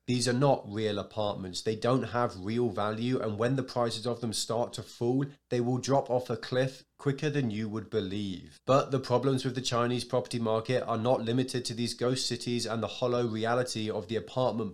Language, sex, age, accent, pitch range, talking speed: English, male, 20-39, British, 105-125 Hz, 210 wpm